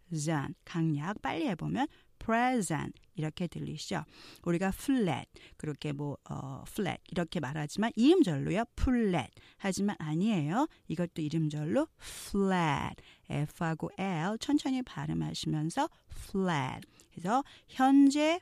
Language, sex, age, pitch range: Korean, female, 40-59, 165-265 Hz